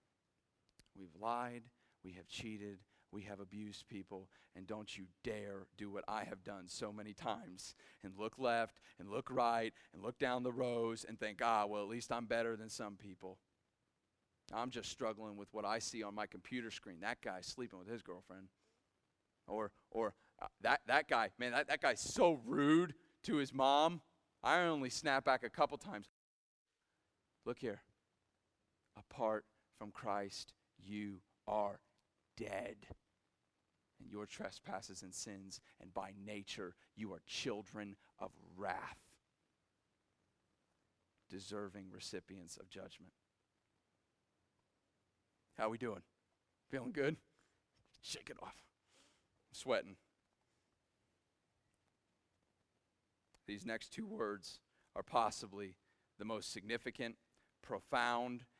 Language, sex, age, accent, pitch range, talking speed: English, male, 40-59, American, 100-120 Hz, 130 wpm